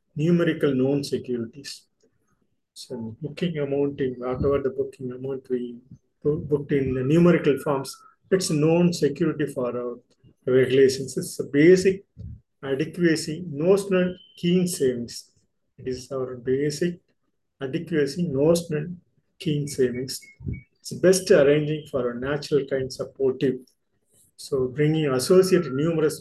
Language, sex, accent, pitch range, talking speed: Tamil, male, native, 130-150 Hz, 120 wpm